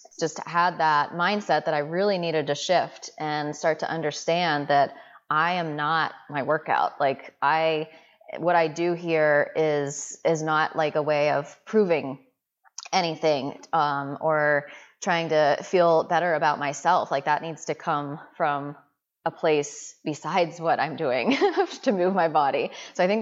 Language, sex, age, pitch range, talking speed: English, female, 20-39, 150-175 Hz, 160 wpm